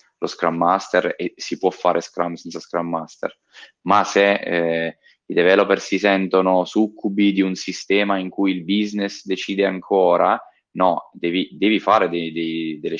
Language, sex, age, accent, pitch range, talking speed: Italian, male, 20-39, native, 85-100 Hz, 160 wpm